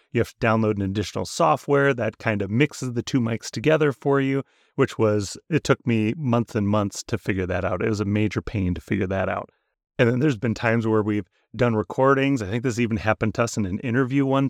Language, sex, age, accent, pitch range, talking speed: English, male, 30-49, American, 110-140 Hz, 240 wpm